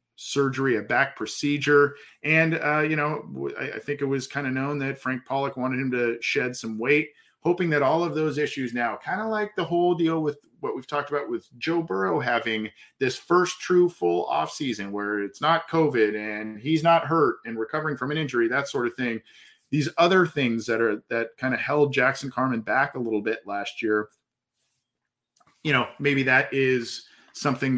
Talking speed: 200 wpm